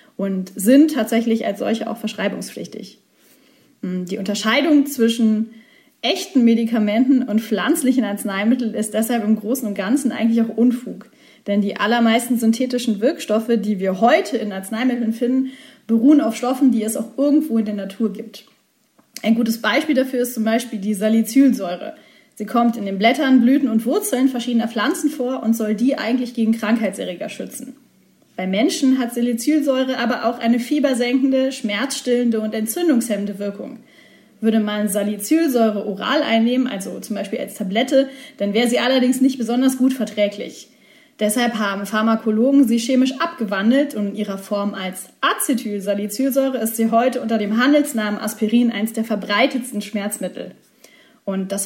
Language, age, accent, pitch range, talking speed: German, 30-49, German, 215-260 Hz, 150 wpm